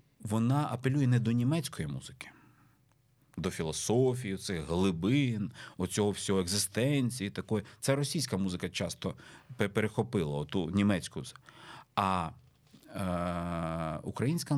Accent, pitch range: native, 95-130 Hz